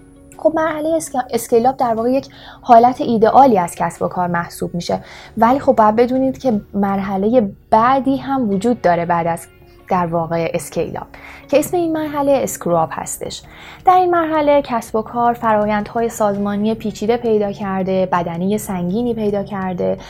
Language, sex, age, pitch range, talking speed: Persian, female, 20-39, 190-255 Hz, 150 wpm